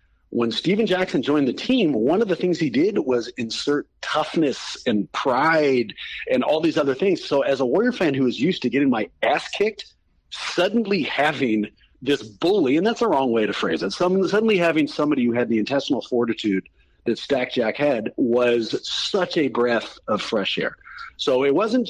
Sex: male